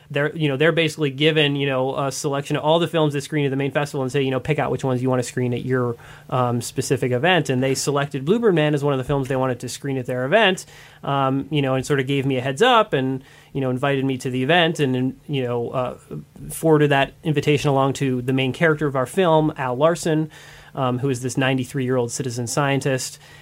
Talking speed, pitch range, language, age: 250 wpm, 130-155 Hz, English, 30-49